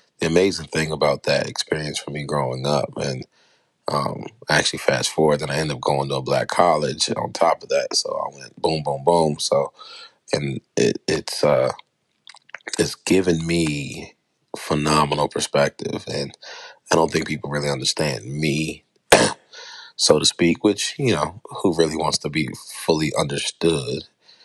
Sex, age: male, 30-49